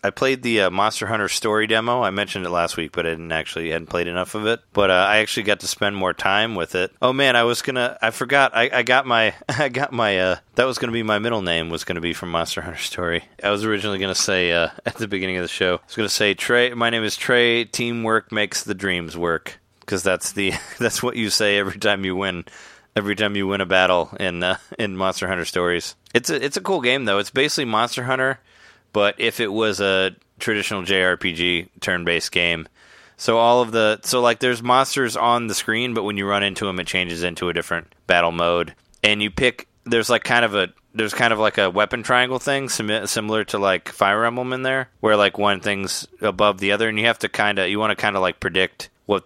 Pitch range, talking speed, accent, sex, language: 90-115 Hz, 235 wpm, American, male, English